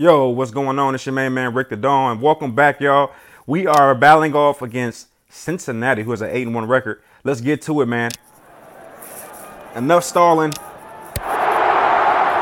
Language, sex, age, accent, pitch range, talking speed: English, male, 30-49, American, 130-165 Hz, 155 wpm